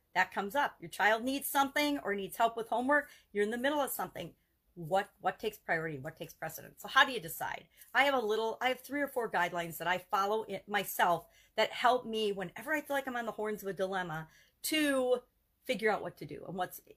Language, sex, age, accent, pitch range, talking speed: English, female, 40-59, American, 180-235 Hz, 235 wpm